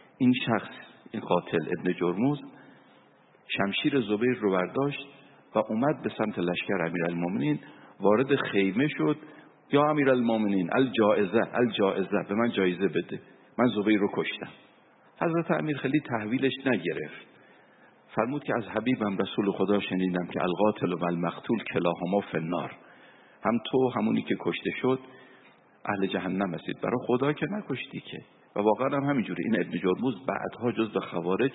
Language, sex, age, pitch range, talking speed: Persian, male, 50-69, 90-130 Hz, 145 wpm